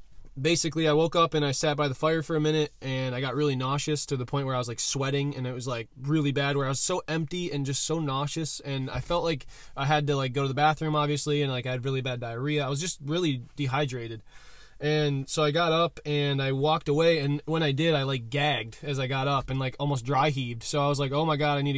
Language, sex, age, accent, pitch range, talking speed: English, male, 20-39, American, 135-150 Hz, 275 wpm